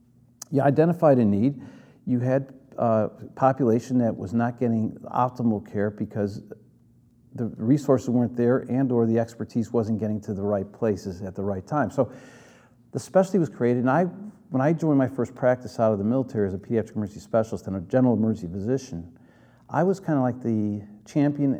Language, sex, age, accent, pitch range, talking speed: English, male, 50-69, American, 105-130 Hz, 185 wpm